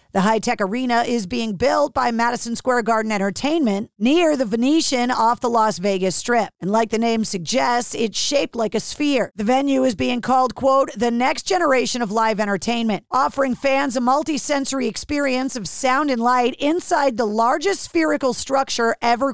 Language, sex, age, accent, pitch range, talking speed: English, female, 40-59, American, 220-270 Hz, 175 wpm